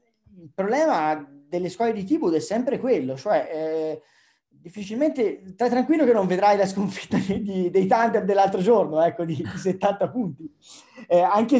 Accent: native